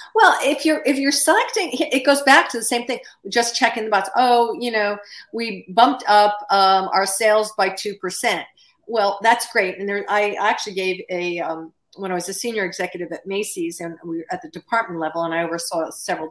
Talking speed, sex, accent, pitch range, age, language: 215 wpm, female, American, 175-220 Hz, 50-69, English